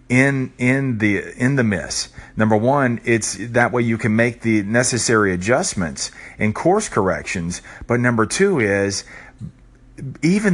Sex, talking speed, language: male, 140 wpm, English